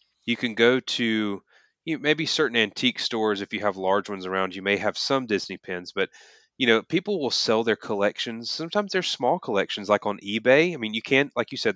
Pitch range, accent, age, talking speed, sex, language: 105-145 Hz, American, 30-49, 225 wpm, male, English